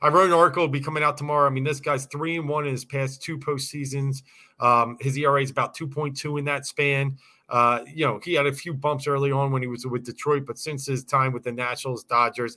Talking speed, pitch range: 250 wpm, 130-155 Hz